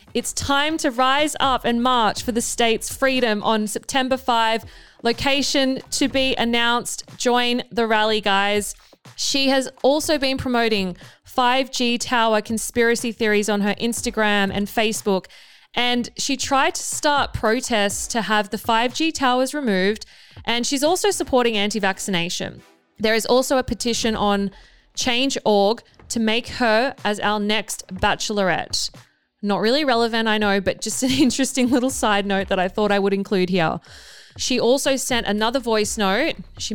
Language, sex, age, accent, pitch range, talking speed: English, female, 20-39, Australian, 205-255 Hz, 150 wpm